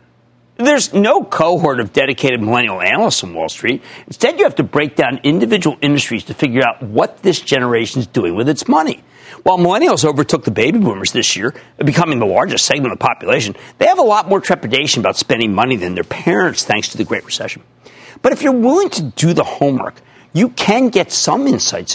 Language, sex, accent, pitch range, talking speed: English, male, American, 135-200 Hz, 200 wpm